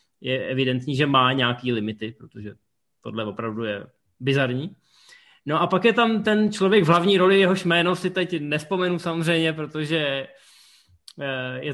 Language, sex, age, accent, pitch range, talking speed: Czech, male, 20-39, native, 125-160 Hz, 150 wpm